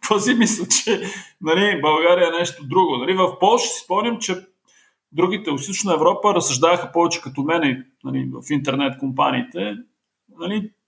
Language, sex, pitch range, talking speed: Bulgarian, male, 150-210 Hz, 150 wpm